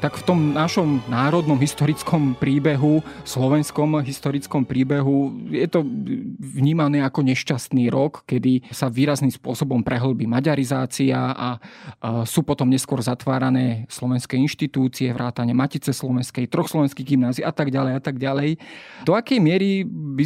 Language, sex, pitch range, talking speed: Slovak, male, 130-155 Hz, 130 wpm